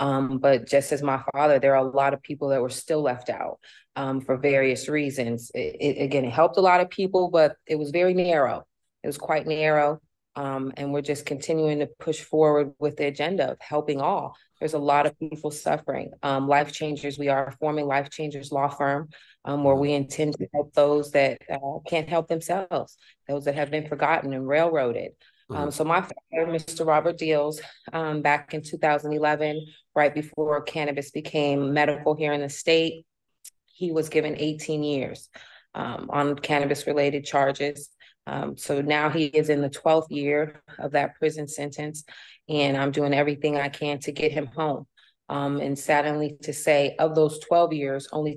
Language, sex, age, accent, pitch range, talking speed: English, female, 30-49, American, 140-155 Hz, 180 wpm